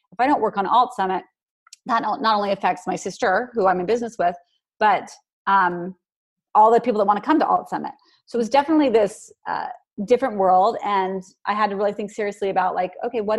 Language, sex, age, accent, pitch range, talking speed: English, female, 30-49, American, 185-225 Hz, 220 wpm